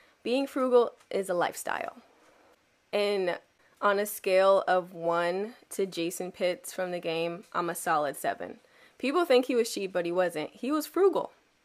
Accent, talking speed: American, 165 wpm